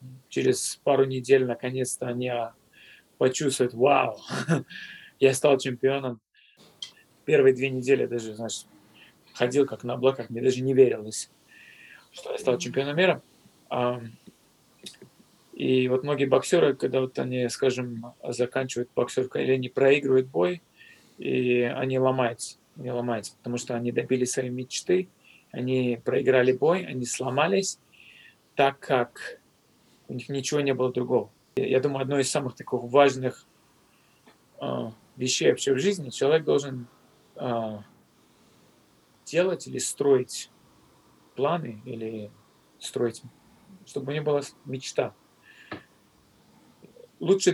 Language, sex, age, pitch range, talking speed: Russian, male, 20-39, 125-150 Hz, 120 wpm